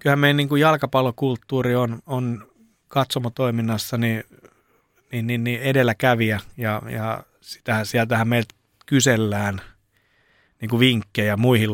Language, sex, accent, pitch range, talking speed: Finnish, male, native, 110-125 Hz, 105 wpm